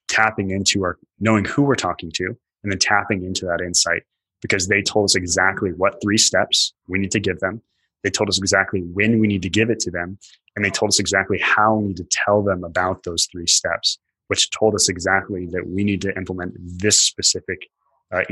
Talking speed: 215 wpm